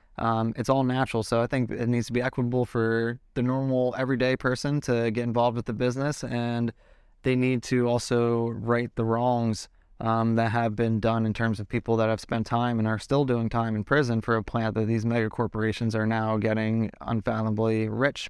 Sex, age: male, 20-39